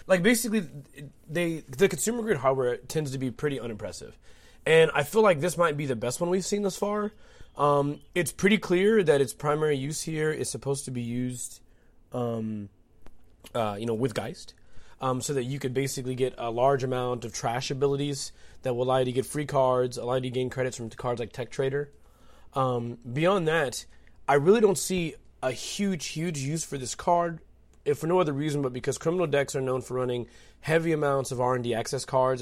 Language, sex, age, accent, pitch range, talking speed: English, male, 20-39, American, 125-155 Hz, 205 wpm